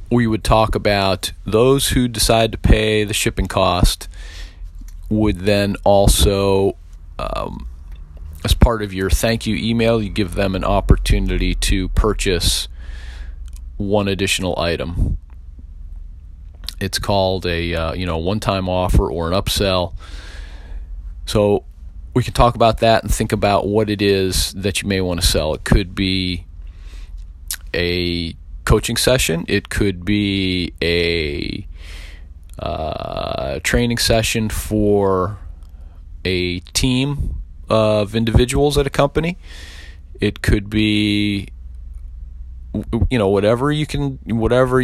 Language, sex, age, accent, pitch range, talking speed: English, male, 40-59, American, 80-110 Hz, 125 wpm